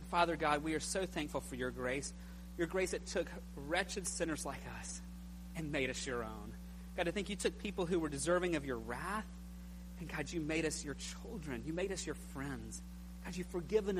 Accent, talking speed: American, 210 wpm